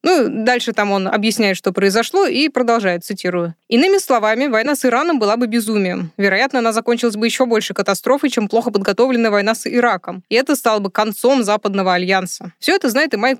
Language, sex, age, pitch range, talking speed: Russian, female, 20-39, 200-255 Hz, 195 wpm